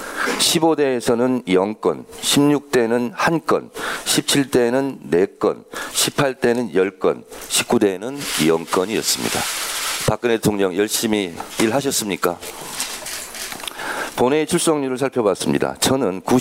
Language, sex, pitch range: Korean, male, 110-145 Hz